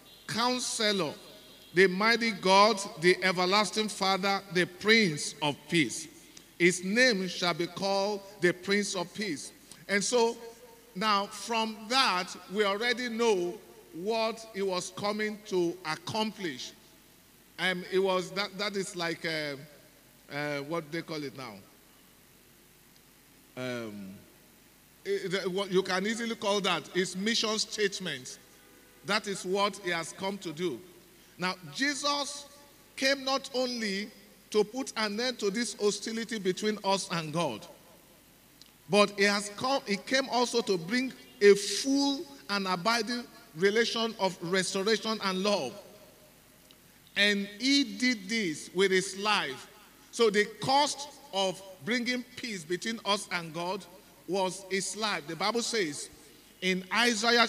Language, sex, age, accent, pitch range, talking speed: English, male, 50-69, Nigerian, 180-225 Hz, 125 wpm